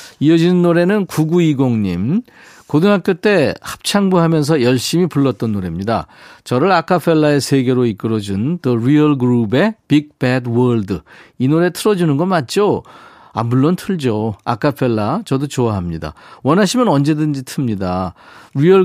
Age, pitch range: 40-59, 115-170 Hz